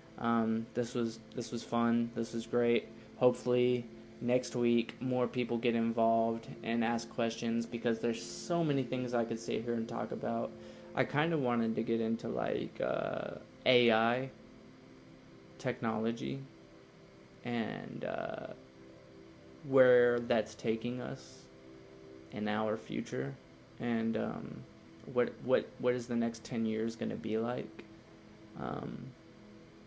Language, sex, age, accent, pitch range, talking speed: English, male, 20-39, American, 110-125 Hz, 135 wpm